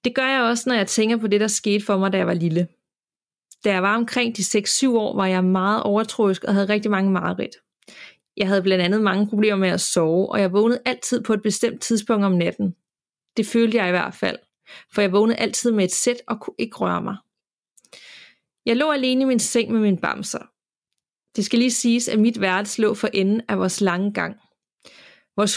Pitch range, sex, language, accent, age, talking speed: 195-235 Hz, female, Danish, native, 30-49, 220 wpm